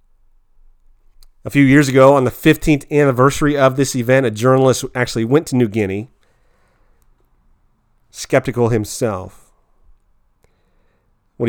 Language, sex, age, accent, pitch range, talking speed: English, male, 40-59, American, 100-125 Hz, 110 wpm